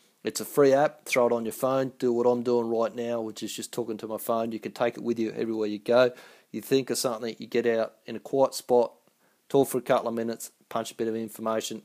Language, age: English, 30-49